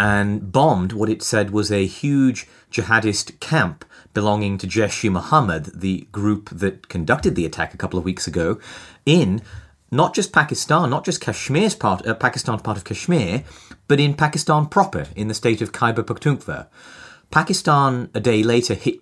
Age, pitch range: 30-49, 100-125 Hz